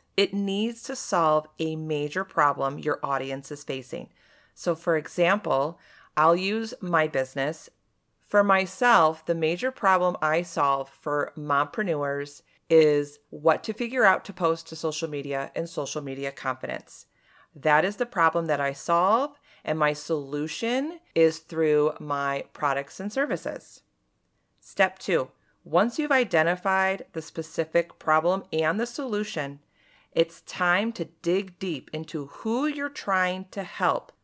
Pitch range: 150-190 Hz